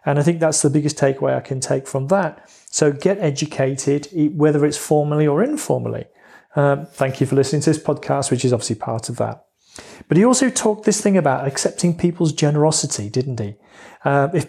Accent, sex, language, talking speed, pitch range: British, male, English, 200 wpm, 130-170 Hz